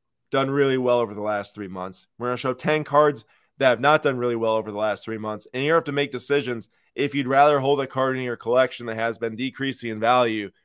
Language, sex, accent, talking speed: English, male, American, 255 wpm